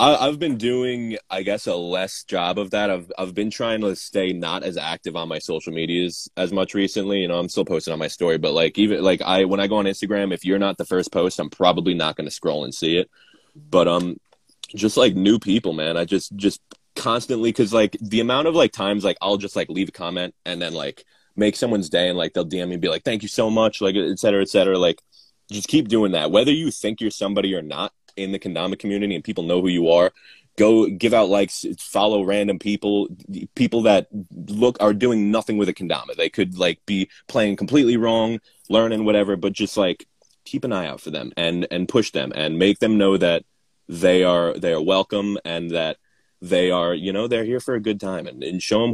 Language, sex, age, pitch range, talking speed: English, male, 20-39, 90-105 Hz, 235 wpm